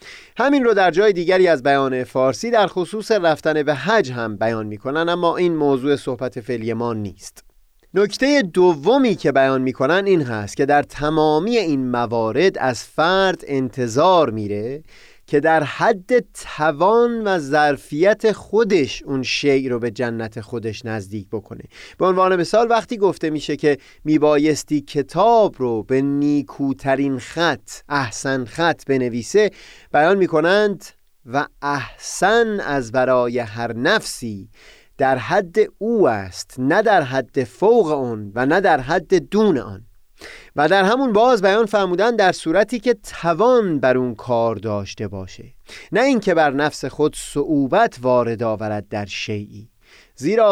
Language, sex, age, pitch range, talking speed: Persian, male, 30-49, 120-185 Hz, 145 wpm